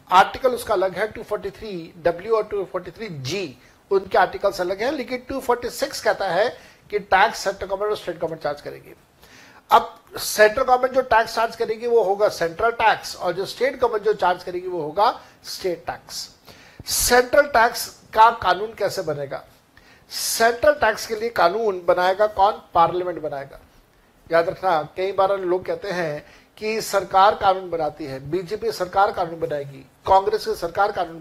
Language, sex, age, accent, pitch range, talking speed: Hindi, male, 60-79, native, 175-225 Hz, 125 wpm